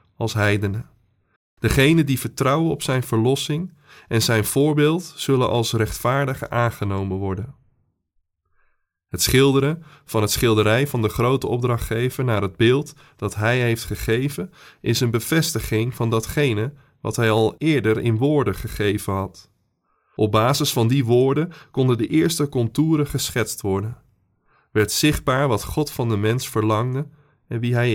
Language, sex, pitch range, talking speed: Dutch, male, 105-135 Hz, 145 wpm